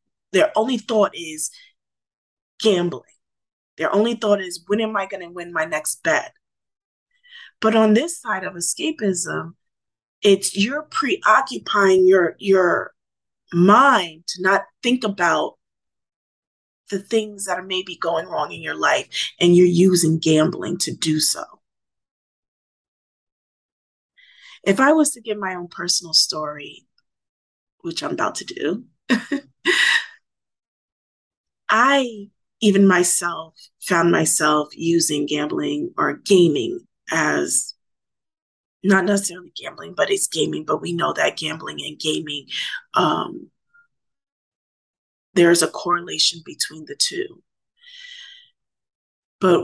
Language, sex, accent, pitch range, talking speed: English, female, American, 170-250 Hz, 115 wpm